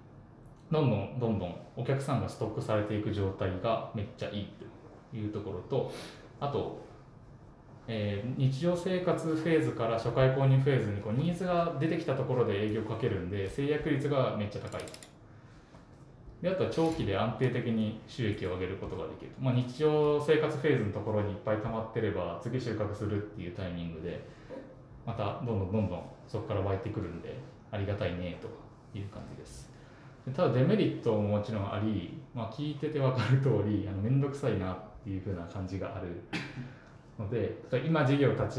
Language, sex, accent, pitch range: Japanese, male, native, 105-135 Hz